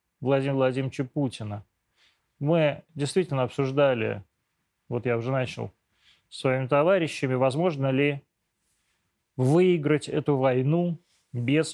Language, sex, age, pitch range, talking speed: Russian, male, 30-49, 125-155 Hz, 95 wpm